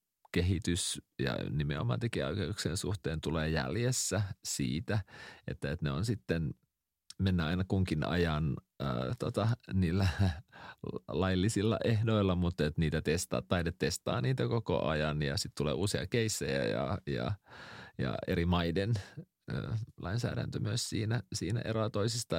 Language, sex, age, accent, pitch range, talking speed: Finnish, male, 30-49, native, 85-110 Hz, 130 wpm